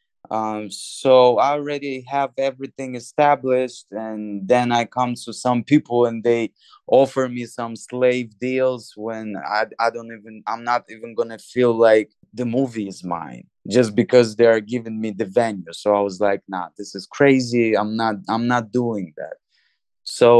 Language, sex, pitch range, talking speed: English, male, 110-125 Hz, 175 wpm